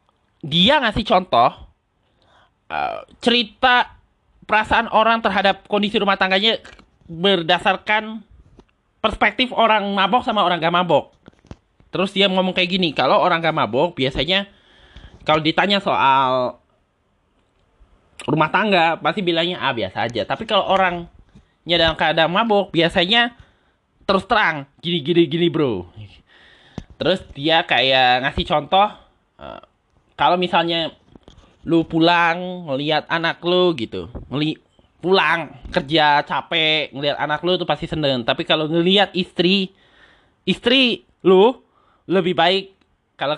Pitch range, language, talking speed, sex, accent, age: 155-200 Hz, Indonesian, 115 wpm, male, native, 20-39